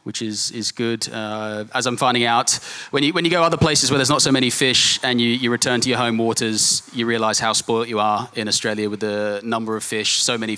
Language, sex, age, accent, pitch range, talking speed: English, male, 20-39, Australian, 105-120 Hz, 255 wpm